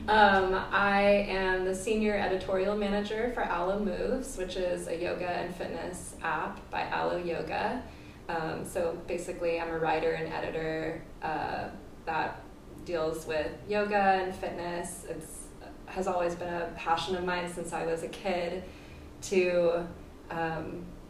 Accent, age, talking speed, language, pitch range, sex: American, 20-39, 140 wpm, English, 170-200 Hz, female